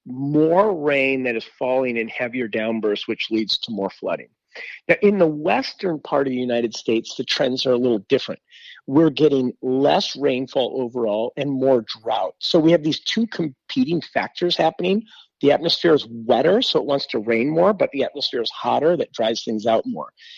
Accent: American